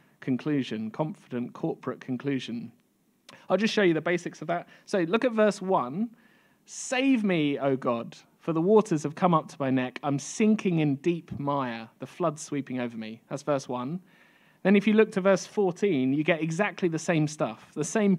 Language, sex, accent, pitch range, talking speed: English, male, British, 130-195 Hz, 190 wpm